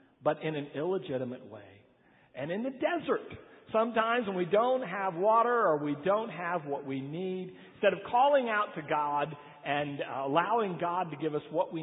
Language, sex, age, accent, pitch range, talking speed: English, male, 50-69, American, 145-215 Hz, 185 wpm